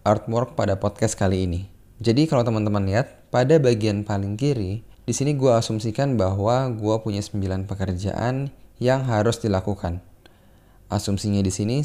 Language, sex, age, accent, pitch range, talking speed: Indonesian, male, 20-39, native, 100-120 Hz, 140 wpm